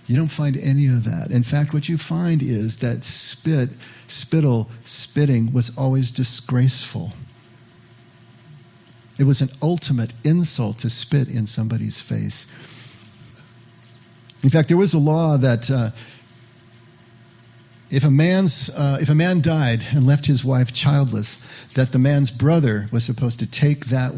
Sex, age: male, 50-69